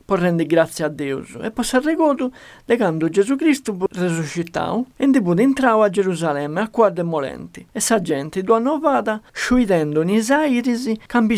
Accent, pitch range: native, 165-230 Hz